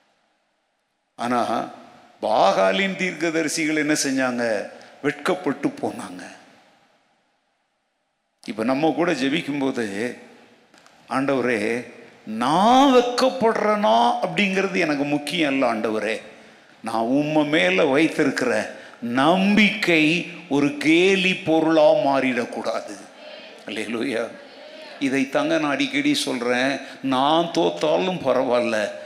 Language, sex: Tamil, male